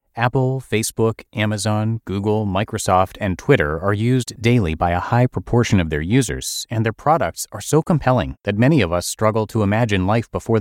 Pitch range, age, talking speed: 90-125 Hz, 30-49, 180 wpm